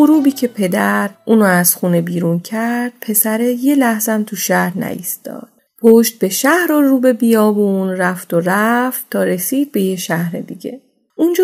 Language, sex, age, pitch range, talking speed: Persian, female, 30-49, 190-255 Hz, 155 wpm